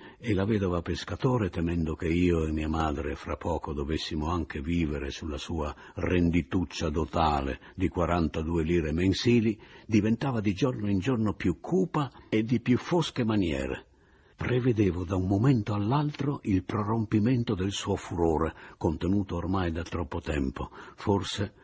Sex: male